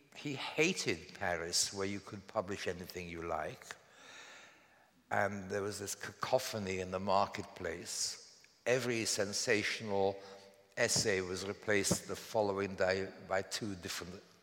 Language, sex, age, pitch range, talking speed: English, male, 60-79, 100-140 Hz, 120 wpm